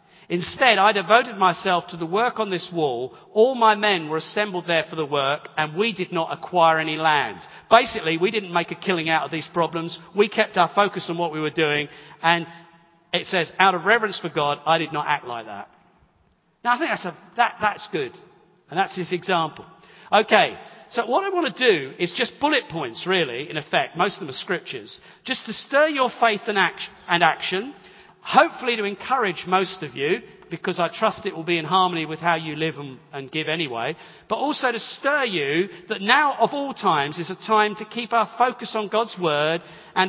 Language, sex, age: English, male, 50-69